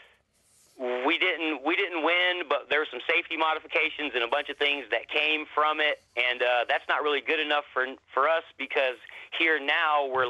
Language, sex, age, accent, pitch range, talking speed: English, male, 40-59, American, 125-150 Hz, 200 wpm